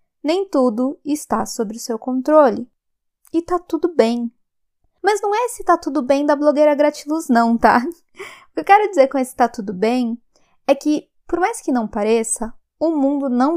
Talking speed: 190 wpm